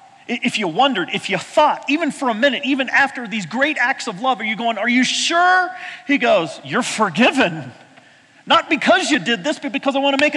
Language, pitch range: English, 190-320 Hz